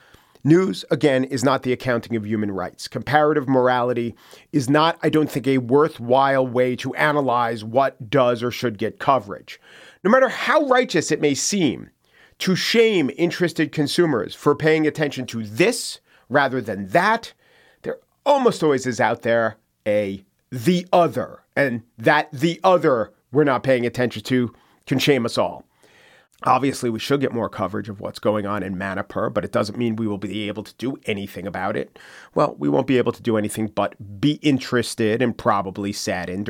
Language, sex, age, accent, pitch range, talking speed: English, male, 40-59, American, 110-145 Hz, 175 wpm